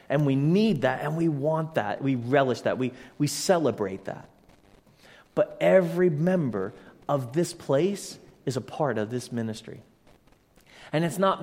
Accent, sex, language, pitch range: American, male, English, 120-165 Hz